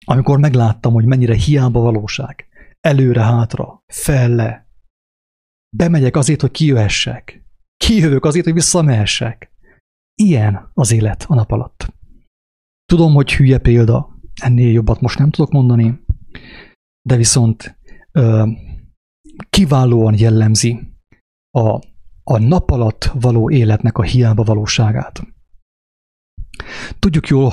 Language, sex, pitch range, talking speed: English, male, 110-130 Hz, 105 wpm